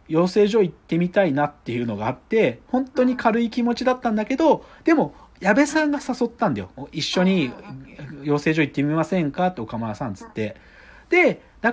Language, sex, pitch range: Japanese, male, 140-210 Hz